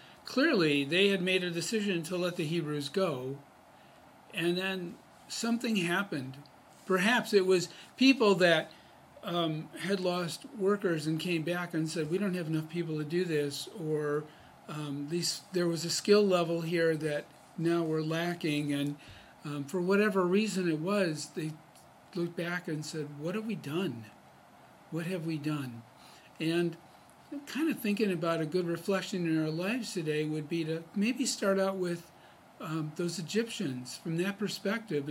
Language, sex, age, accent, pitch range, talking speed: English, male, 50-69, American, 155-190 Hz, 165 wpm